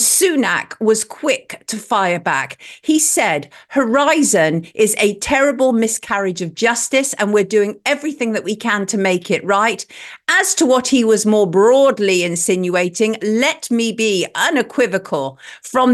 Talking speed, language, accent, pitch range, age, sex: 145 wpm, English, British, 200-280 Hz, 50-69, female